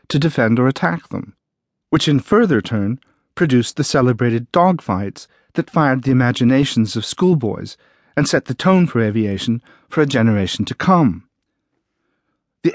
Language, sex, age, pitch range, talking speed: English, male, 50-69, 115-155 Hz, 145 wpm